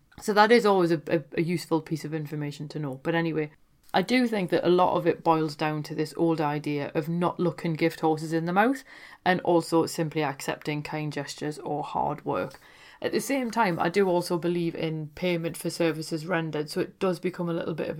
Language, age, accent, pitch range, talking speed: English, 30-49, British, 160-185 Hz, 225 wpm